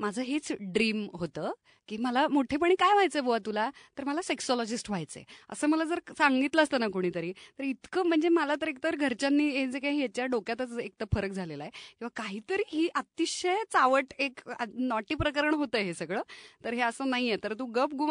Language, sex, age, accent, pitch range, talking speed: Marathi, female, 30-49, native, 200-275 Hz, 190 wpm